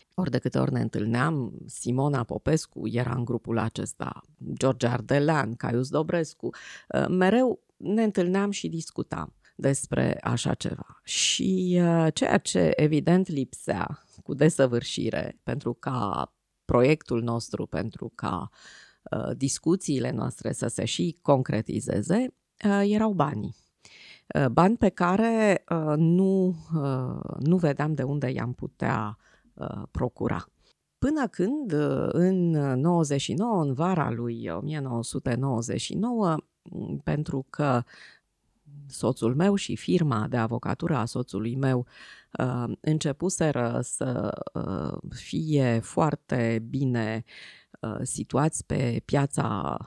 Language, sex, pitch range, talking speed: Romanian, female, 120-170 Hz, 100 wpm